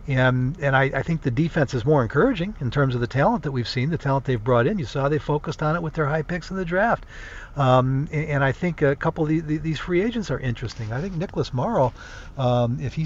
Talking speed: 265 wpm